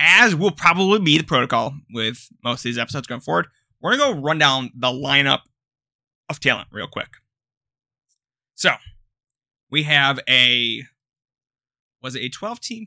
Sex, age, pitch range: male, 30-49, 130-175 Hz